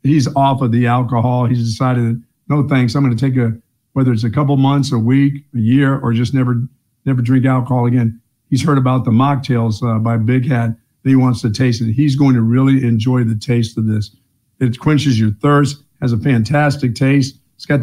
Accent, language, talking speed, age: American, English, 210 wpm, 50-69